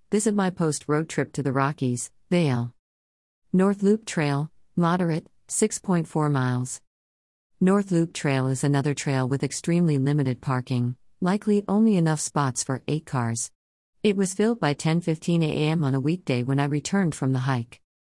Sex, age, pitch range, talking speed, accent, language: female, 50-69, 130-160 Hz, 155 wpm, American, English